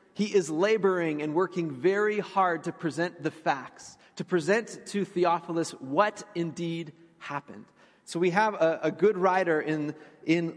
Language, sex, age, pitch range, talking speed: English, male, 30-49, 150-190 Hz, 155 wpm